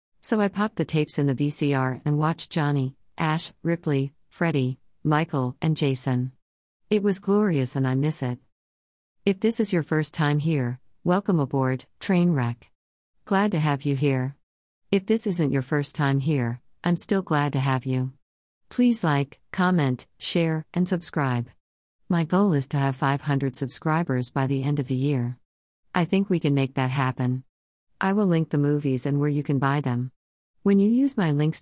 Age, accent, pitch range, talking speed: 50-69, American, 130-170 Hz, 180 wpm